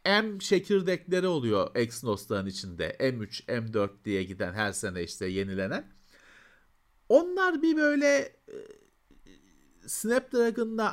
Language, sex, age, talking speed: Turkish, male, 50-69, 100 wpm